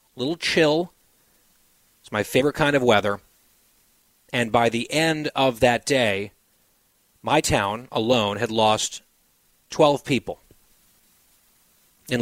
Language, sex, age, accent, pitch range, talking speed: English, male, 40-59, American, 115-145 Hz, 115 wpm